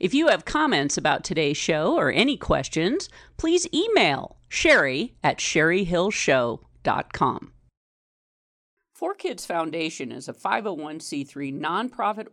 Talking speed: 100 wpm